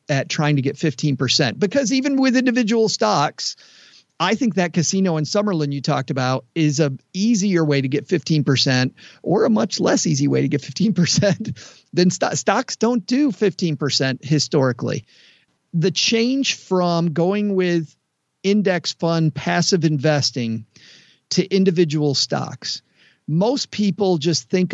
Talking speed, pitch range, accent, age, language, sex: 140 wpm, 140-180 Hz, American, 50-69, English, male